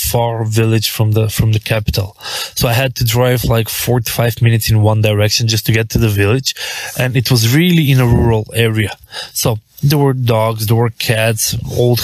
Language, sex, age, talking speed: English, male, 20-39, 200 wpm